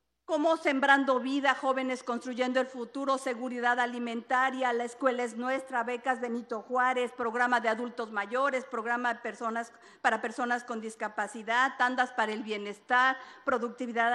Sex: female